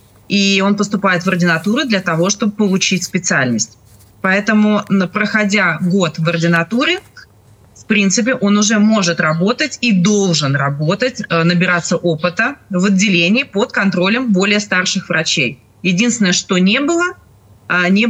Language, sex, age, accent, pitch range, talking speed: Russian, female, 30-49, native, 170-215 Hz, 125 wpm